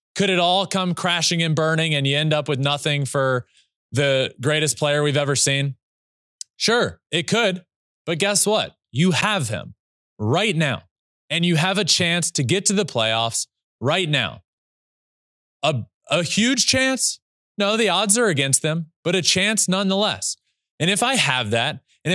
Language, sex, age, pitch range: English, male, 20-39, 115-185 Hz